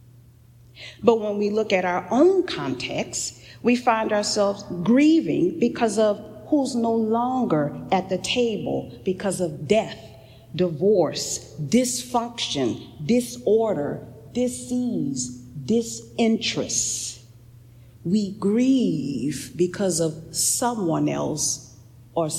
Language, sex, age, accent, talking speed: English, female, 40-59, American, 95 wpm